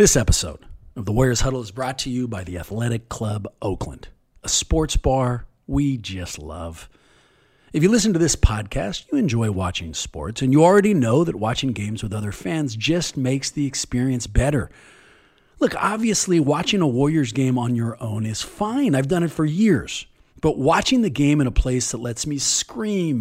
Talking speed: 190 wpm